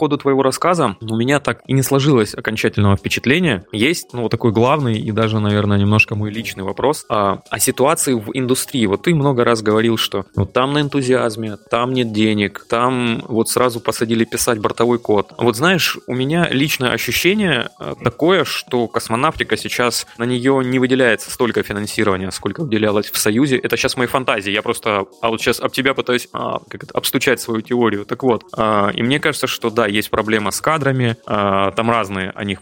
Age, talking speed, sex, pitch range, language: 20-39, 185 wpm, male, 110-130 Hz, Russian